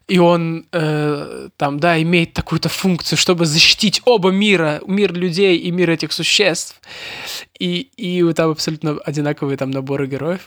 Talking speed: 150 wpm